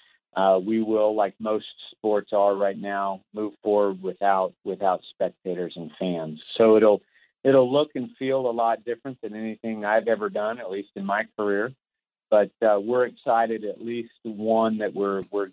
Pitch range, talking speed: 95-110 Hz, 175 wpm